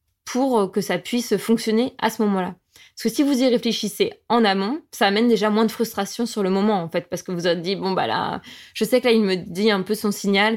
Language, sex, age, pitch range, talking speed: French, female, 20-39, 195-230 Hz, 265 wpm